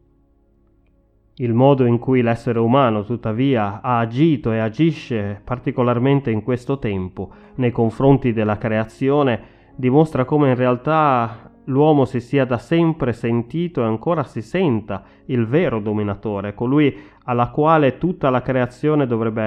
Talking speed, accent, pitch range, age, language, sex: 135 wpm, native, 110-135 Hz, 30-49, Italian, male